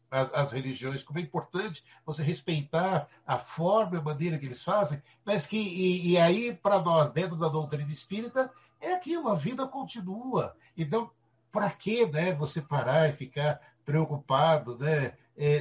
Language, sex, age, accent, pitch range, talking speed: Portuguese, male, 60-79, Brazilian, 140-185 Hz, 165 wpm